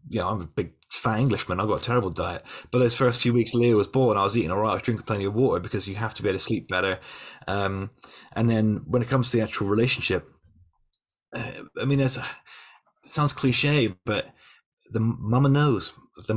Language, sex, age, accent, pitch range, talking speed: English, male, 30-49, British, 105-130 Hz, 230 wpm